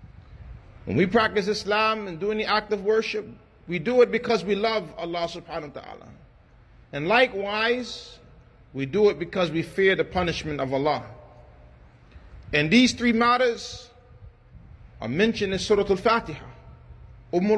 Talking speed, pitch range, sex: 145 wpm, 125-205 Hz, male